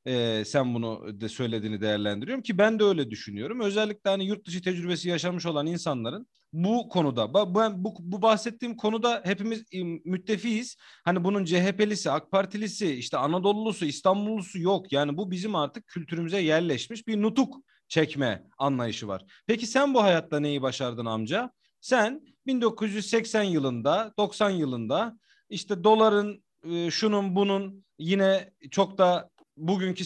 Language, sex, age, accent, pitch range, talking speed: Turkish, male, 40-59, native, 155-210 Hz, 135 wpm